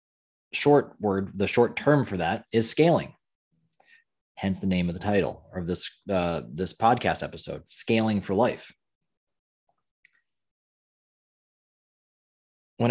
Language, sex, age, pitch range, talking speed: English, male, 20-39, 95-120 Hz, 115 wpm